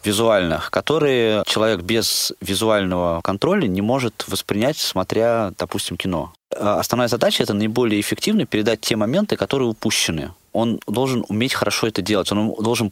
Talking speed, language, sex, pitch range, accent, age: 150 wpm, Russian, male, 95-115 Hz, native, 20-39